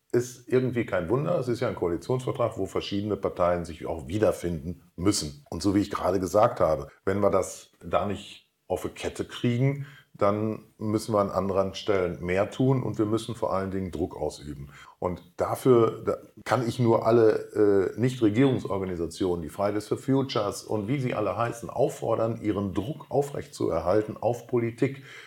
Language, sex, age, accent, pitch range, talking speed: German, male, 40-59, German, 100-130 Hz, 170 wpm